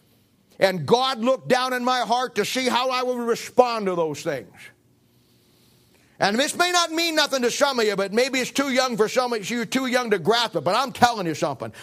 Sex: male